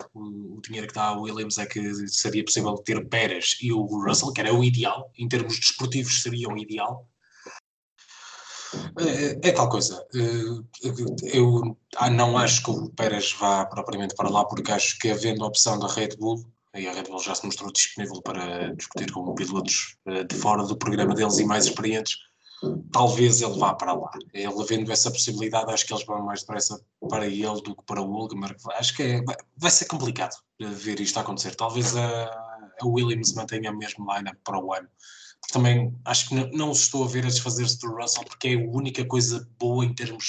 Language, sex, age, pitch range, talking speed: Portuguese, male, 20-39, 105-125 Hz, 195 wpm